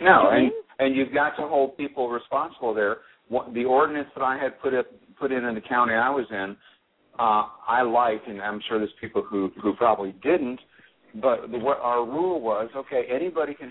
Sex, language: male, English